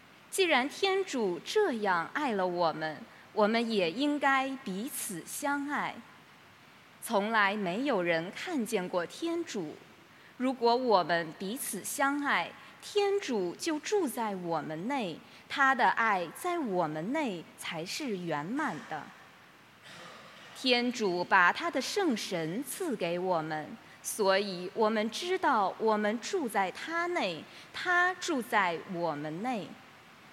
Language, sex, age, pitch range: English, female, 20-39, 185-310 Hz